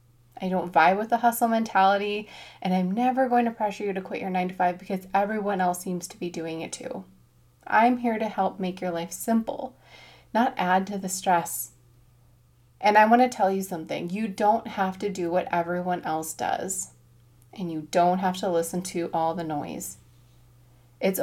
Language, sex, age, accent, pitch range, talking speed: English, female, 20-39, American, 165-205 Hz, 195 wpm